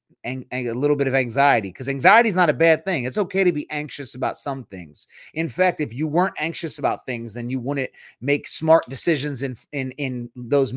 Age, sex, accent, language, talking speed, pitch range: 30-49, male, American, English, 215 wpm, 125-155 Hz